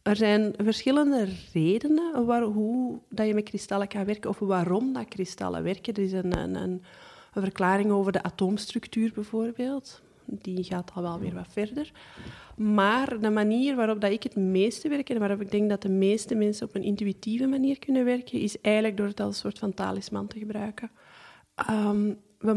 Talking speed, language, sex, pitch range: 175 wpm, Dutch, female, 195-220 Hz